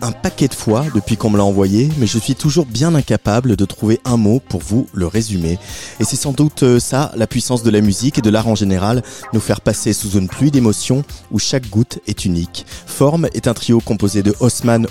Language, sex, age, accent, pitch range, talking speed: French, male, 30-49, French, 100-125 Hz, 230 wpm